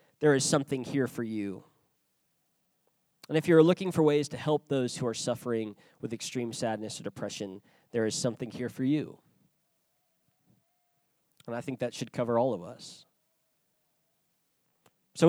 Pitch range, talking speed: 120-155 Hz, 155 wpm